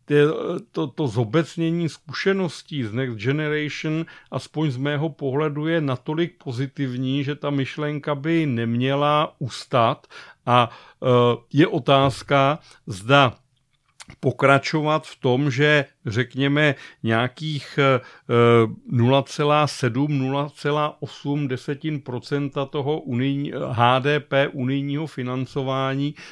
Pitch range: 130-145 Hz